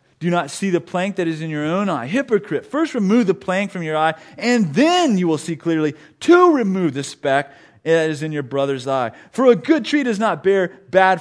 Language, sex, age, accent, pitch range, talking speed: English, male, 30-49, American, 145-200 Hz, 230 wpm